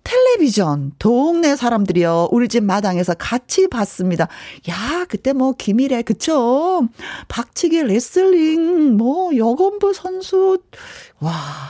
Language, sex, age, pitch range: Korean, female, 40-59, 195-325 Hz